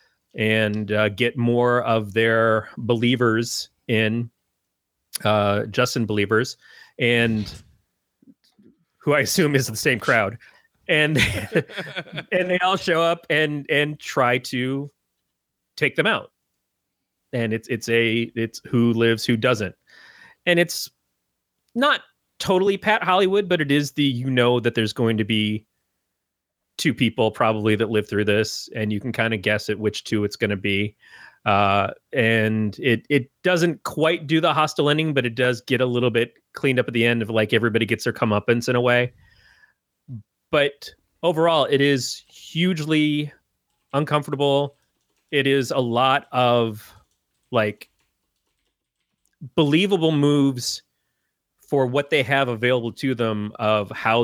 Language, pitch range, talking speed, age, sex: English, 110-145 Hz, 145 wpm, 30-49, male